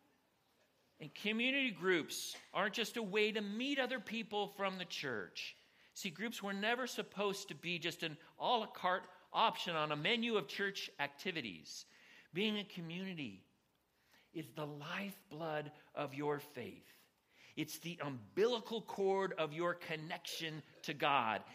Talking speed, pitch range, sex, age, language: 140 wpm, 150-215 Hz, male, 50-69, English